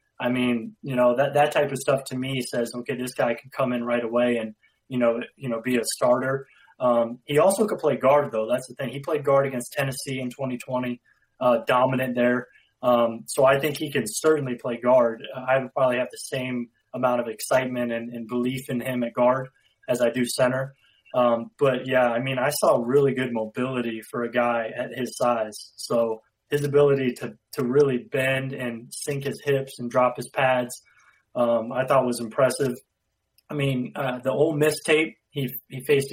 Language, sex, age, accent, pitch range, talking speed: English, male, 20-39, American, 120-140 Hz, 200 wpm